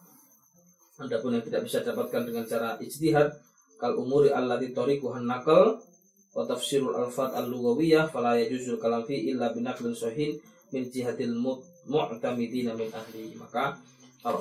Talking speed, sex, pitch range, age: 110 wpm, male, 115-160 Hz, 20-39